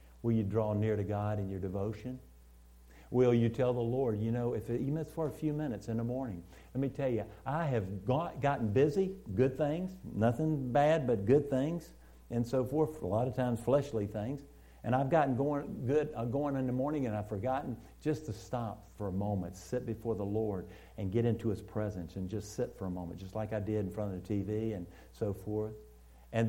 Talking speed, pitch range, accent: 225 wpm, 100-125 Hz, American